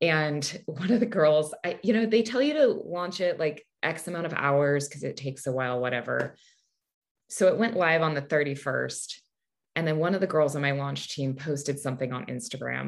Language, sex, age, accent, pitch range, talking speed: English, female, 20-39, American, 140-225 Hz, 215 wpm